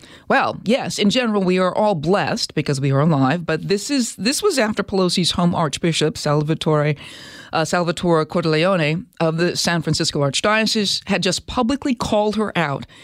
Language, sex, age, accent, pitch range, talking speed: English, female, 40-59, American, 160-205 Hz, 165 wpm